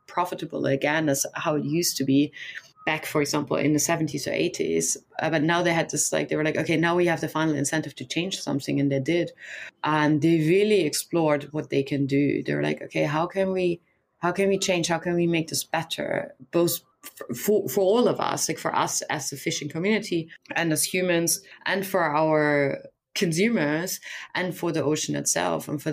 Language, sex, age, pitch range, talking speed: English, female, 20-39, 150-180 Hz, 210 wpm